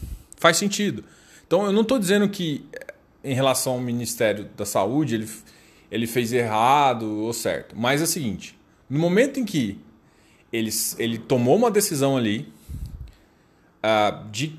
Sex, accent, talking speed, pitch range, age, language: male, Brazilian, 145 wpm, 115-180 Hz, 20-39, Portuguese